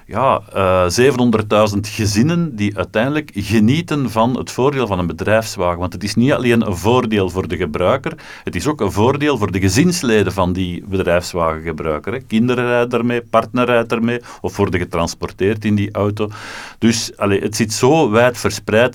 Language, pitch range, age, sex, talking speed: Dutch, 95-120 Hz, 50-69, male, 170 wpm